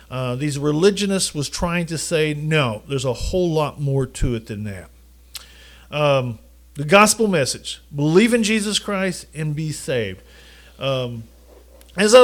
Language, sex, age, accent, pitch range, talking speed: English, male, 50-69, American, 140-195 Hz, 150 wpm